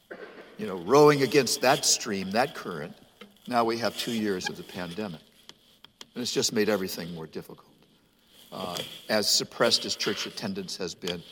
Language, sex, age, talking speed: English, male, 60-79, 165 wpm